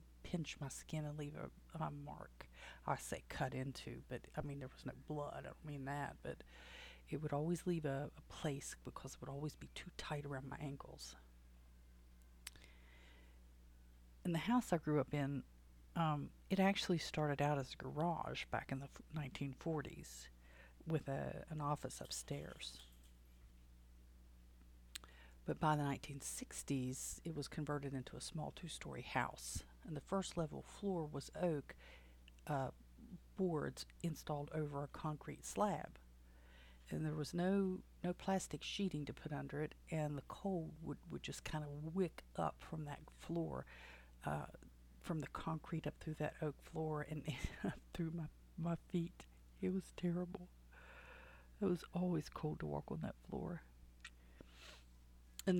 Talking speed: 150 wpm